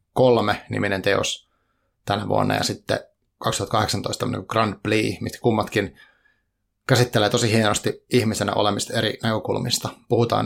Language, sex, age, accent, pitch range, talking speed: Finnish, male, 30-49, native, 105-125 Hz, 110 wpm